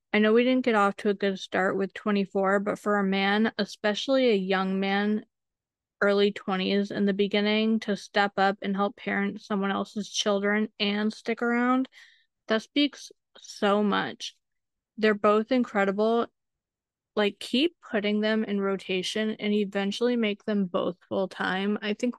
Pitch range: 200-230 Hz